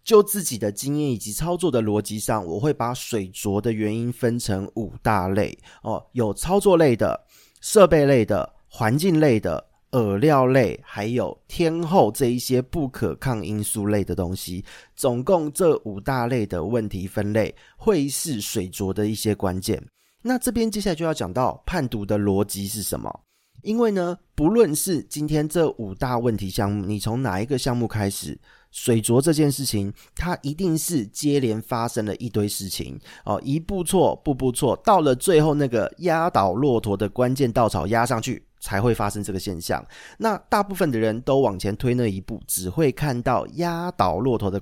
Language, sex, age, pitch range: Chinese, male, 30-49, 105-145 Hz